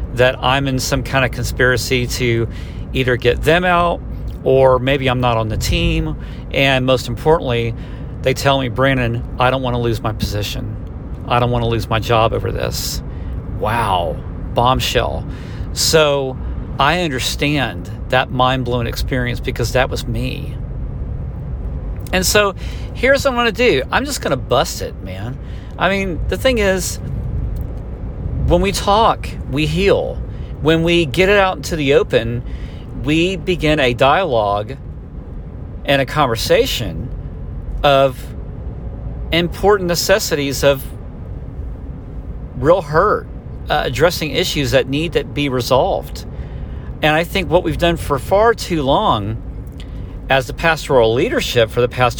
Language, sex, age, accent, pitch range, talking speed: English, male, 50-69, American, 115-160 Hz, 145 wpm